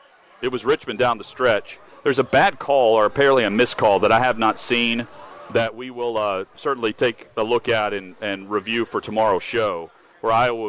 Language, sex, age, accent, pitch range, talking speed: English, male, 40-59, American, 115-135 Hz, 210 wpm